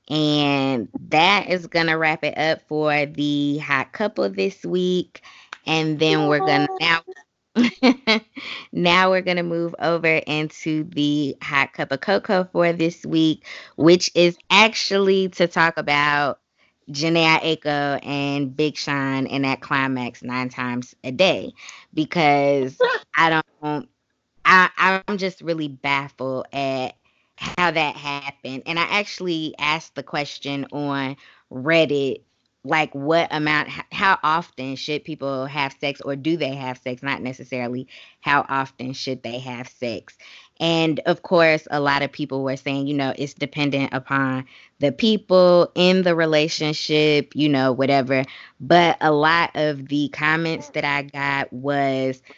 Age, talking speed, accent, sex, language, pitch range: 20-39, 145 wpm, American, female, English, 135-165 Hz